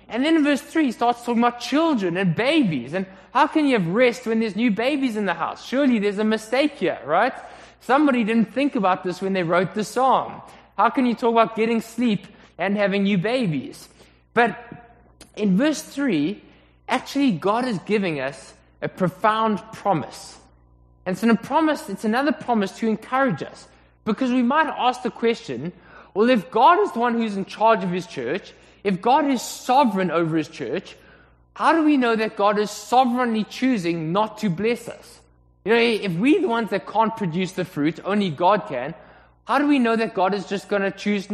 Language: English